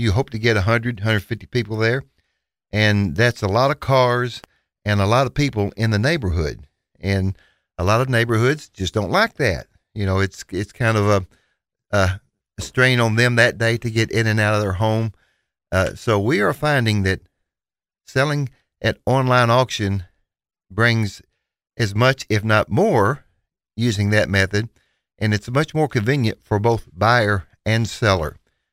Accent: American